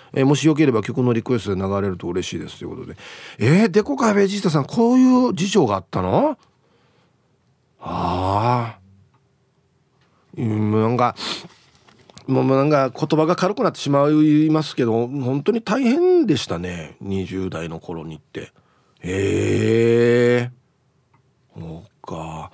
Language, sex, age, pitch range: Japanese, male, 40-59, 125-180 Hz